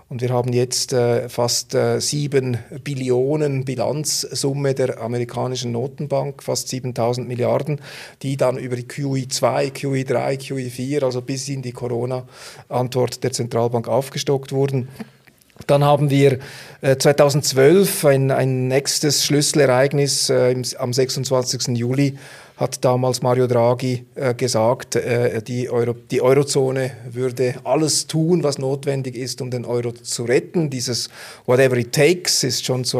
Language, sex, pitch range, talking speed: German, male, 125-145 Hz, 140 wpm